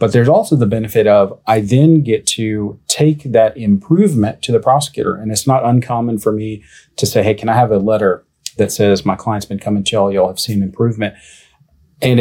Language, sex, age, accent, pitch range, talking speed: English, male, 30-49, American, 100-125 Hz, 210 wpm